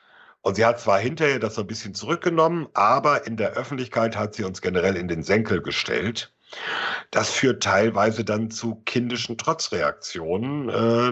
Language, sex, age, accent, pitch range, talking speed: German, male, 50-69, German, 100-125 Hz, 160 wpm